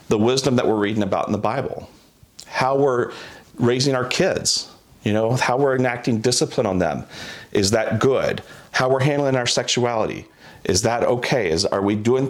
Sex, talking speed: male, 180 wpm